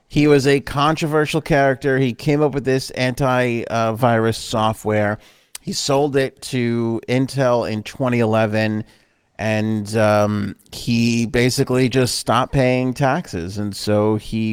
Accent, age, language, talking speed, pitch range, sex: American, 30-49, English, 130 wpm, 110-135 Hz, male